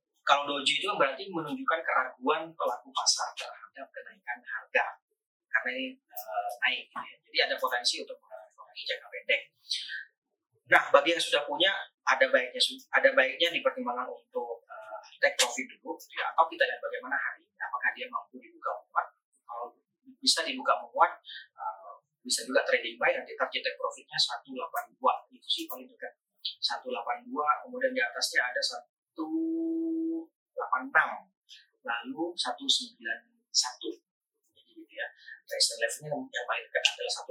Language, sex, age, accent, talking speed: Indonesian, male, 30-49, native, 140 wpm